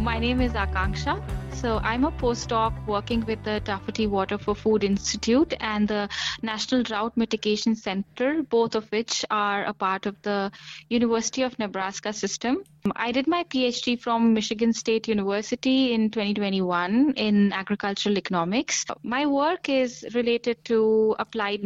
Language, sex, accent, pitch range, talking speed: English, female, Indian, 195-235 Hz, 145 wpm